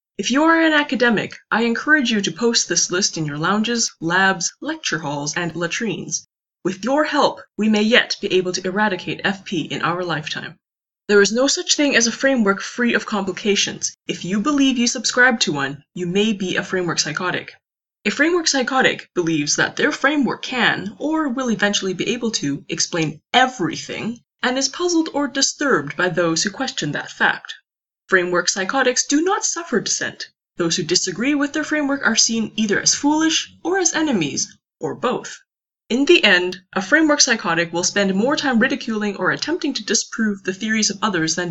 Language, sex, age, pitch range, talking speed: English, female, 20-39, 180-265 Hz, 185 wpm